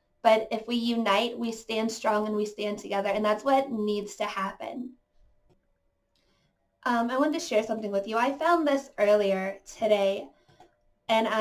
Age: 20-39